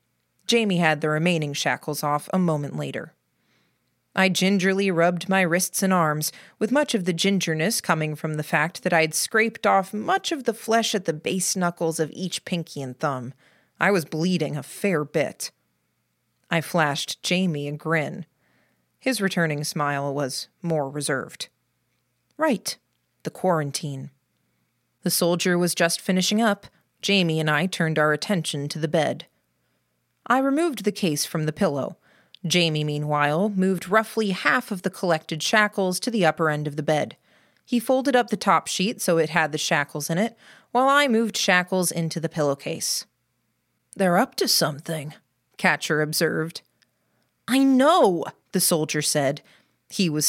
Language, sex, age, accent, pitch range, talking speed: English, female, 30-49, American, 150-195 Hz, 160 wpm